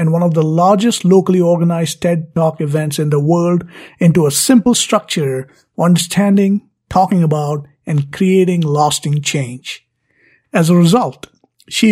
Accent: Indian